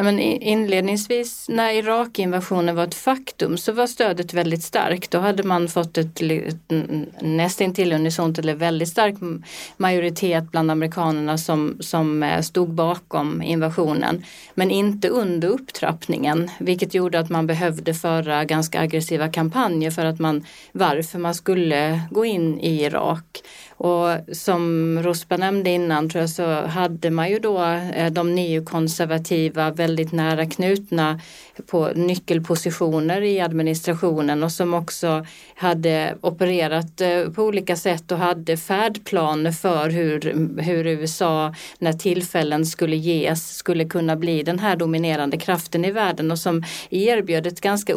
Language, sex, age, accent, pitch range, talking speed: Swedish, female, 30-49, native, 160-180 Hz, 135 wpm